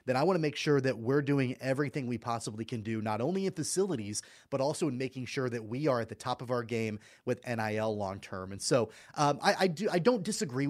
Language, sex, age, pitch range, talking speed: English, male, 30-49, 120-160 Hz, 245 wpm